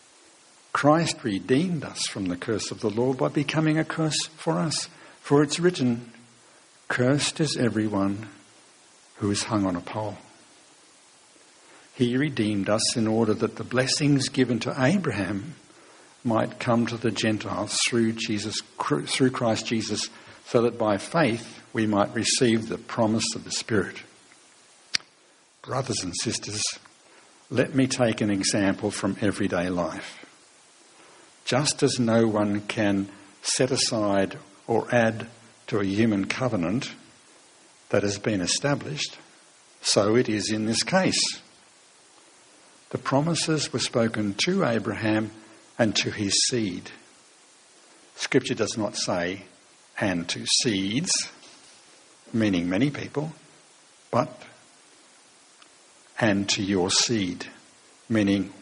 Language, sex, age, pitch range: English, male, 60-79, 105-130 Hz